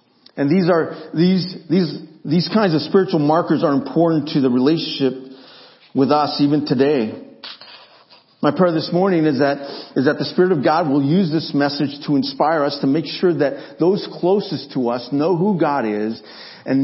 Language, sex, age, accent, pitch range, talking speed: English, male, 50-69, American, 145-185 Hz, 180 wpm